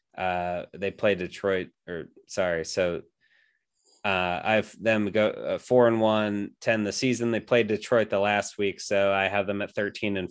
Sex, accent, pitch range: male, American, 95-110 Hz